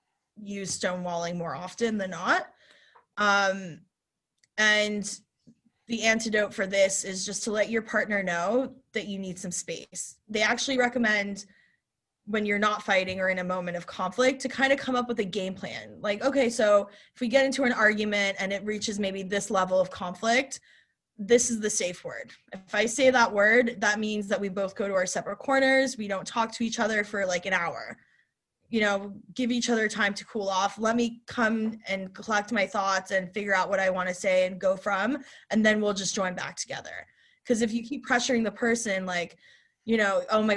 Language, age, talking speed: English, 20-39, 205 wpm